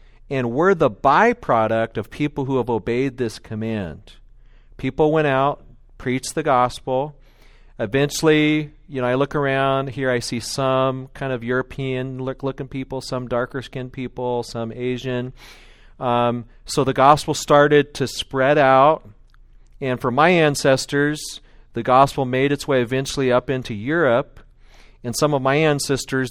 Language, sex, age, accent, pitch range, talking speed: English, male, 40-59, American, 115-140 Hz, 140 wpm